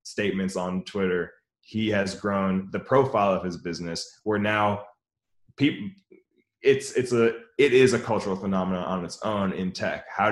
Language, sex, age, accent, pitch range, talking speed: English, male, 20-39, American, 95-115 Hz, 165 wpm